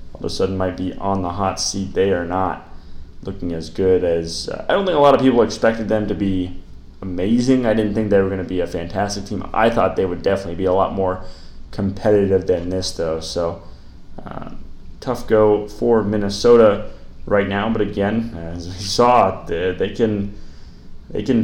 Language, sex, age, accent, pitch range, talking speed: English, male, 20-39, American, 90-115 Hz, 200 wpm